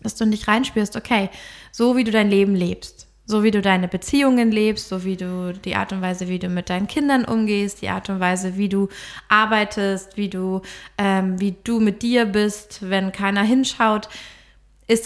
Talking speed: 195 wpm